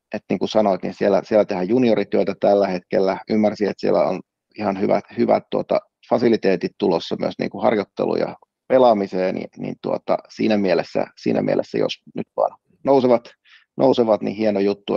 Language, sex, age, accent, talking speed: Finnish, male, 30-49, native, 165 wpm